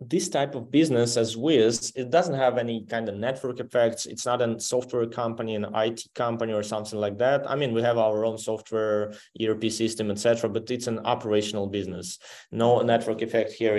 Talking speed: 195 wpm